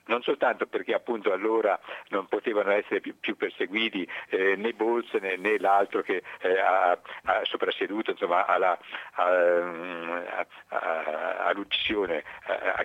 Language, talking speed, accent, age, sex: Italian, 145 wpm, native, 60-79, male